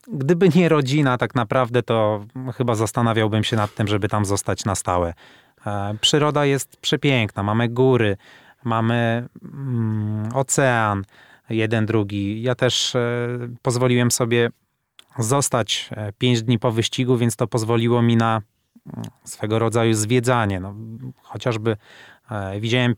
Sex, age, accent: male, 20-39, native